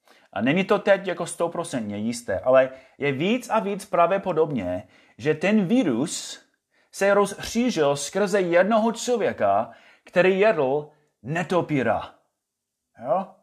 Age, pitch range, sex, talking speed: 30-49, 140-220 Hz, male, 115 wpm